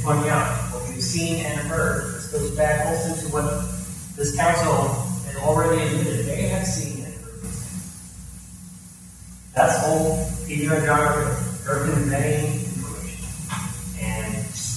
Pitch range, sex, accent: 90-150 Hz, male, American